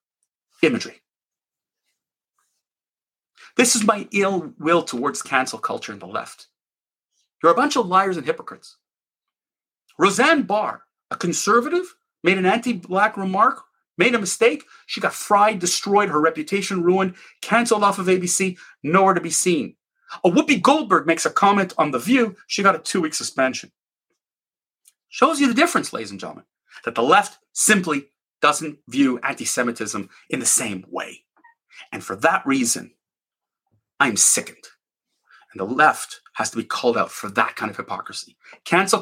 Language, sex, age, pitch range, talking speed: English, male, 40-59, 175-230 Hz, 150 wpm